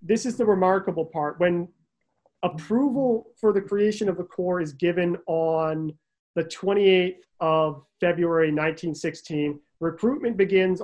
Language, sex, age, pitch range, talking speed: English, male, 40-59, 160-185 Hz, 125 wpm